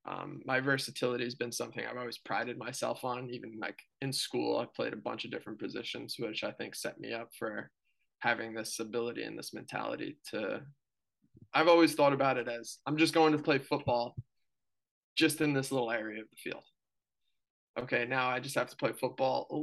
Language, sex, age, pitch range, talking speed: English, male, 20-39, 115-140 Hz, 200 wpm